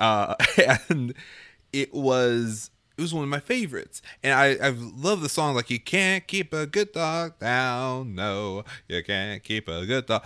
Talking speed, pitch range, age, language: 180 wpm, 105-150 Hz, 30-49, English